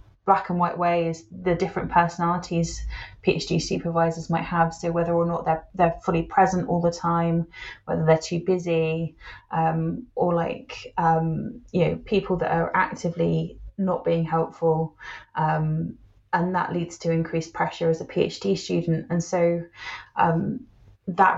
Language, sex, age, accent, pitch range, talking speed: English, female, 20-39, British, 165-190 Hz, 150 wpm